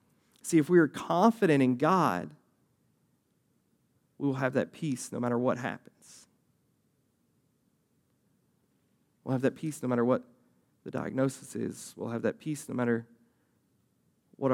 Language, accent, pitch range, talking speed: English, American, 120-150 Hz, 135 wpm